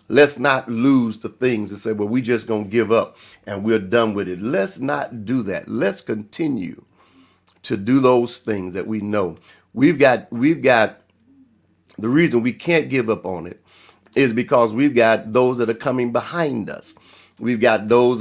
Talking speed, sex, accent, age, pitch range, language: 190 wpm, male, American, 50-69, 110-125 Hz, English